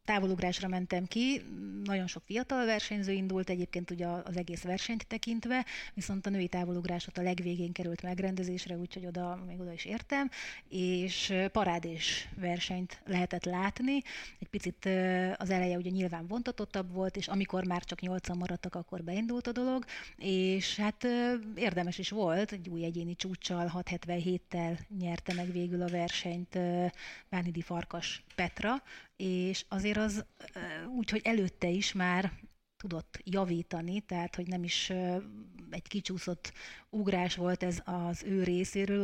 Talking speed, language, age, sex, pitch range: 140 wpm, Hungarian, 30-49, female, 175-200 Hz